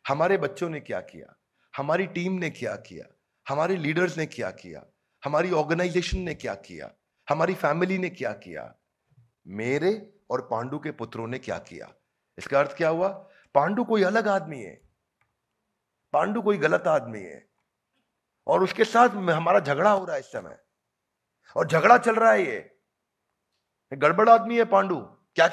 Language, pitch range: Hindi, 140-190 Hz